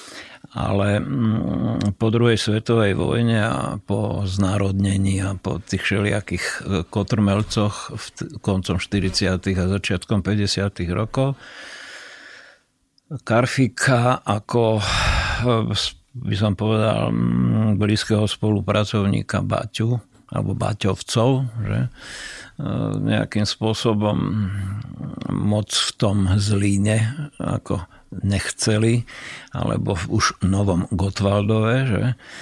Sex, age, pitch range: male, 50-69, 100-115 Hz